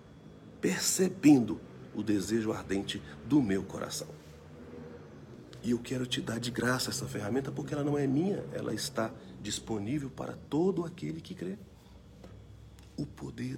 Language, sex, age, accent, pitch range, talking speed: Portuguese, male, 40-59, Brazilian, 100-145 Hz, 135 wpm